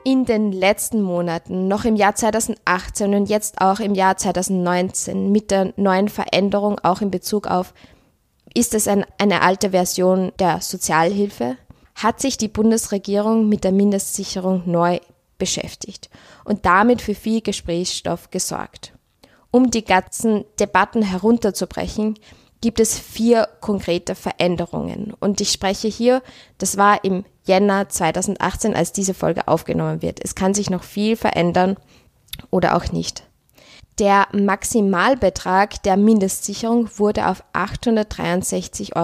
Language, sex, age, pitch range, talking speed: German, female, 20-39, 185-215 Hz, 130 wpm